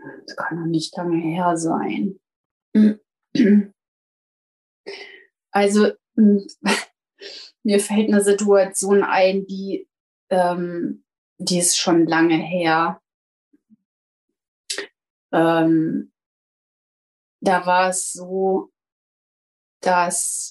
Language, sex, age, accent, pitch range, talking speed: German, female, 30-49, German, 170-205 Hz, 75 wpm